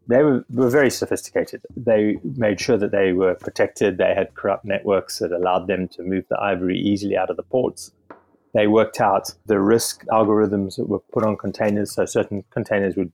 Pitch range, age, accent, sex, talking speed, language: 95-105 Hz, 30-49, British, male, 195 wpm, English